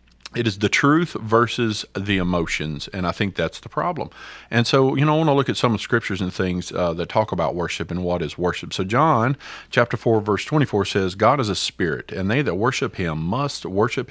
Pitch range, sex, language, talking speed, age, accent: 95-140 Hz, male, English, 235 wpm, 40-59, American